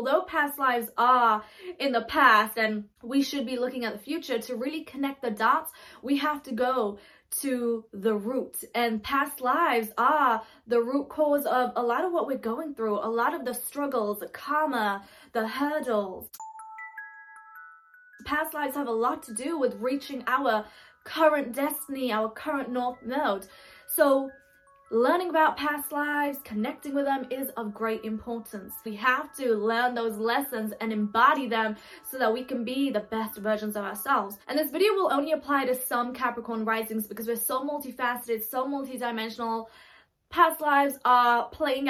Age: 20-39